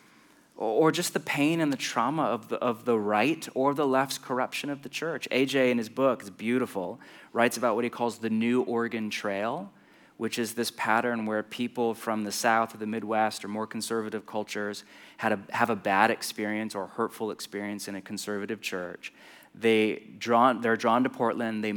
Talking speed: 195 wpm